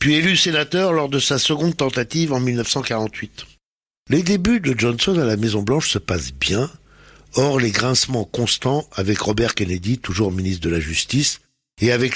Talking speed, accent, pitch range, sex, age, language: 170 wpm, French, 110-145 Hz, male, 60-79, French